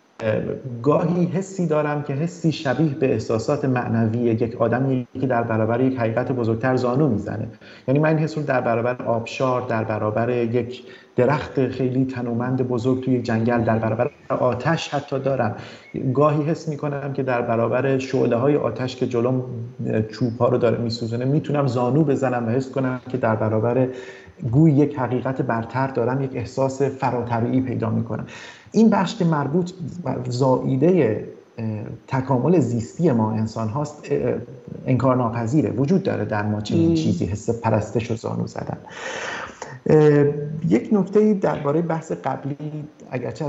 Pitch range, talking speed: 115-145 Hz, 140 wpm